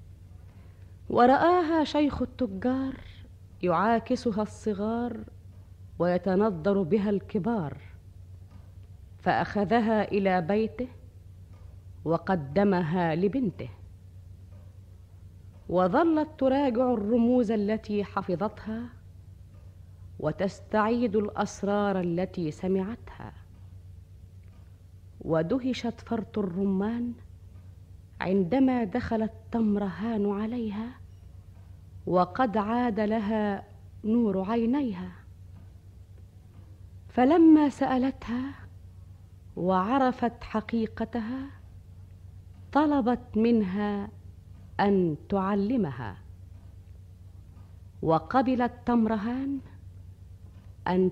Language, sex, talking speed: Arabic, female, 55 wpm